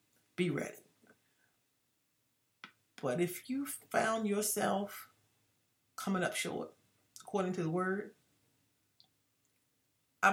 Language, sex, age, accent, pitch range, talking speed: English, female, 40-59, American, 145-210 Hz, 85 wpm